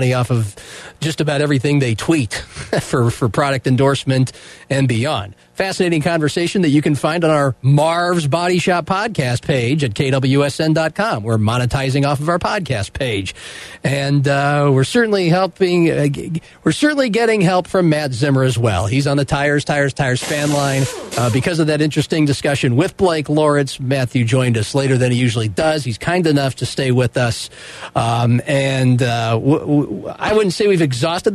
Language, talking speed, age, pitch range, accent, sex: English, 170 wpm, 40-59, 125-165 Hz, American, male